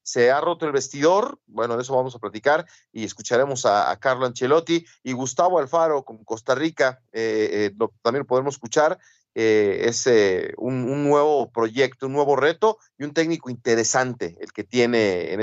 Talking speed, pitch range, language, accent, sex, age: 180 wpm, 115-155 Hz, Spanish, Mexican, male, 40-59